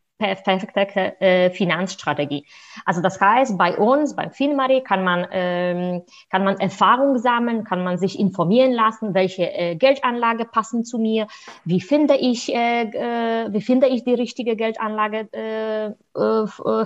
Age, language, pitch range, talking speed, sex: 20-39, German, 185-235 Hz, 140 wpm, female